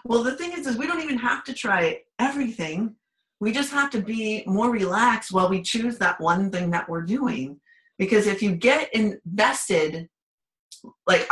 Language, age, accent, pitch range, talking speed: English, 40-59, American, 175-235 Hz, 180 wpm